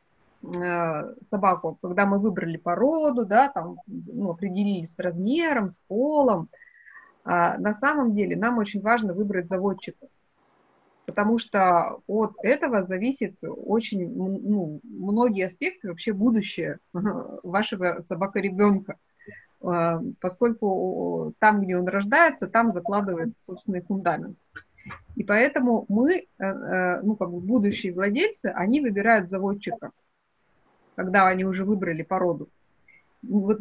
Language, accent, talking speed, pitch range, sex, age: Russian, native, 110 wpm, 185-235 Hz, female, 20-39